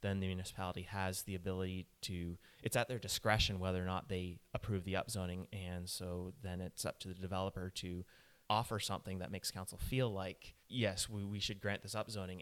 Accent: American